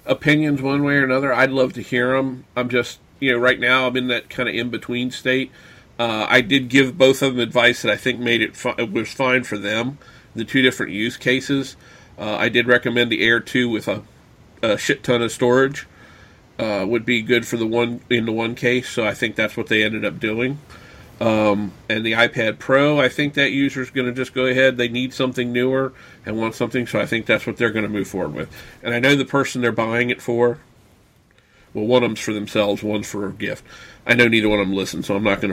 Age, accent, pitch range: 40-59, American, 115-140 Hz